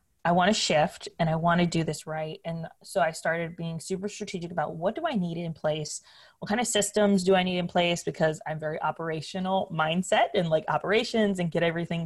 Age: 20-39